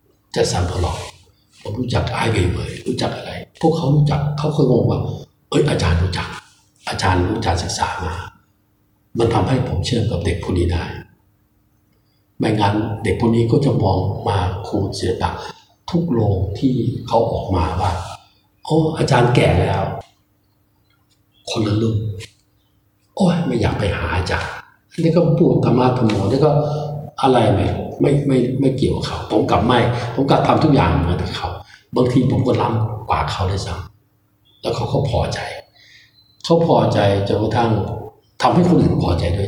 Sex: male